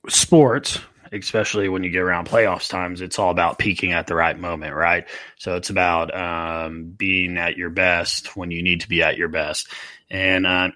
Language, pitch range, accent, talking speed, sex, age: English, 90-105 Hz, American, 195 wpm, male, 30-49